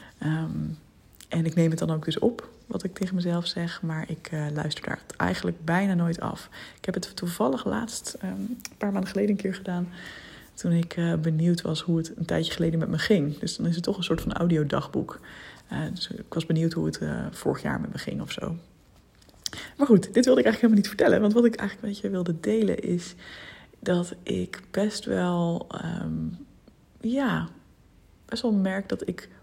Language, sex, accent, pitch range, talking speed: Dutch, female, Dutch, 155-195 Hz, 200 wpm